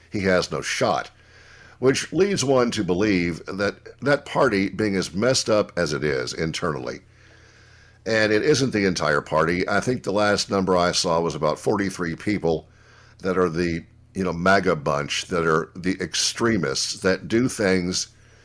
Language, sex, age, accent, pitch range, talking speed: English, male, 60-79, American, 90-115 Hz, 165 wpm